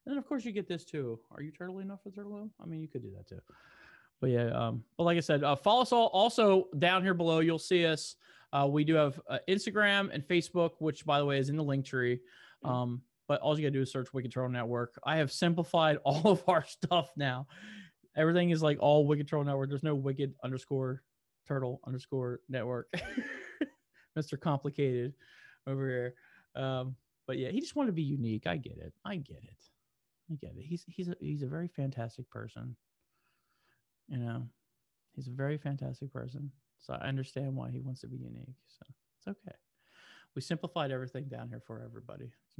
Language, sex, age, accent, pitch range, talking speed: English, male, 20-39, American, 130-180 Hz, 205 wpm